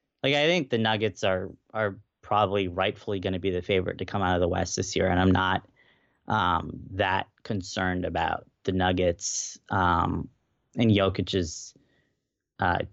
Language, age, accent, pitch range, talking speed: English, 20-39, American, 90-115 Hz, 160 wpm